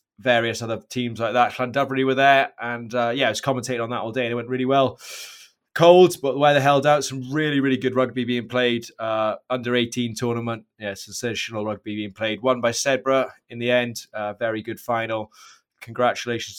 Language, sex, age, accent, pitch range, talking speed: English, male, 20-39, British, 115-135 Hz, 200 wpm